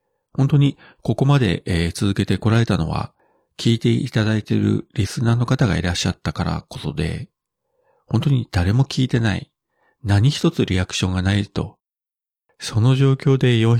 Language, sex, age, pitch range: Japanese, male, 40-59, 95-115 Hz